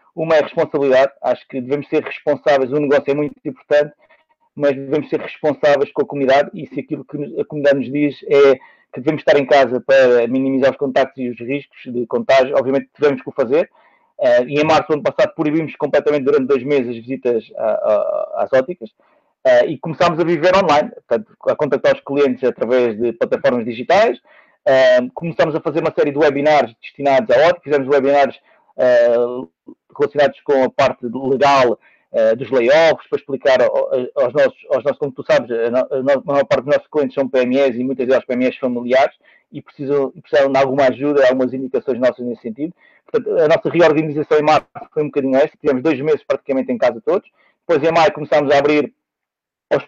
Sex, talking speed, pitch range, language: male, 185 wpm, 130-160 Hz, Portuguese